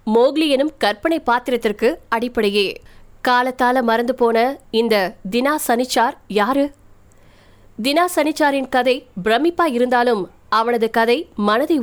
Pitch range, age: 220-275 Hz, 20-39